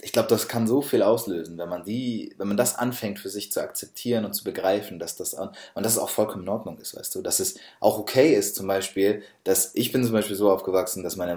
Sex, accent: male, German